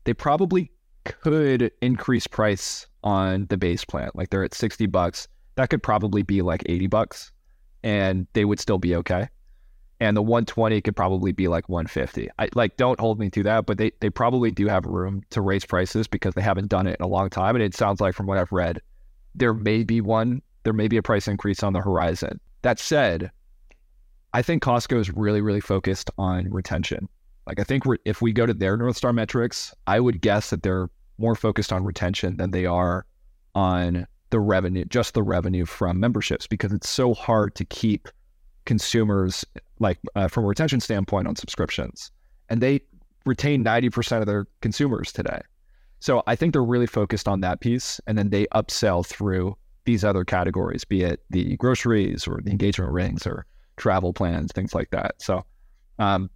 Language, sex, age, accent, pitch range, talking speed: English, male, 20-39, American, 95-115 Hz, 190 wpm